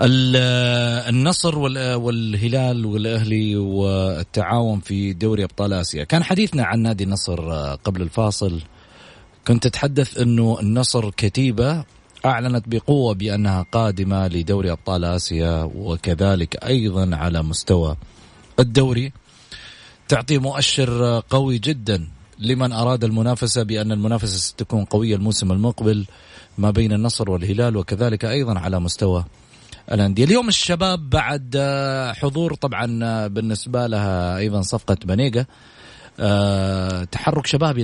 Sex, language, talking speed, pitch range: male, Arabic, 105 wpm, 95-125 Hz